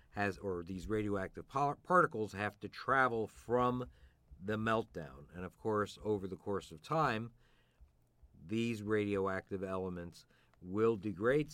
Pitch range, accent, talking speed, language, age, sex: 90-115 Hz, American, 120 wpm, English, 50-69, male